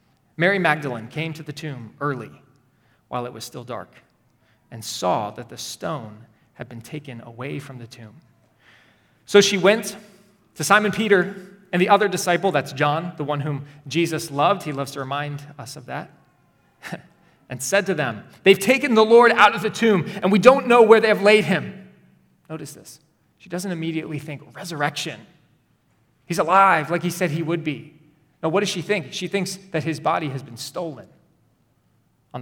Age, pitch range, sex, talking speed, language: 30-49, 140-195 Hz, male, 180 wpm, English